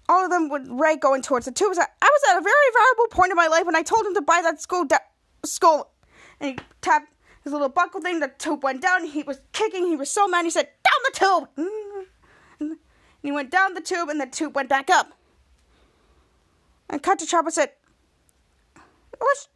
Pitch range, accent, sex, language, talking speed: 295-370 Hz, American, female, English, 220 wpm